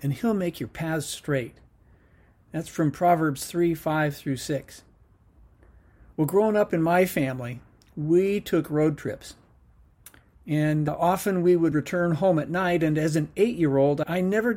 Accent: American